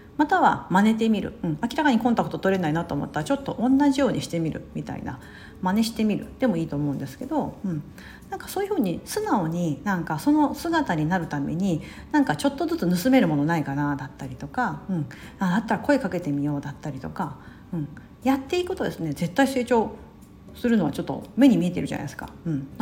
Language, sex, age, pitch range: Japanese, female, 50-69, 160-245 Hz